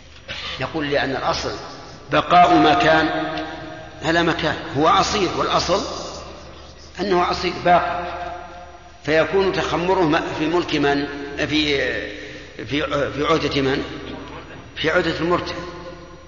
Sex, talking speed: male, 105 wpm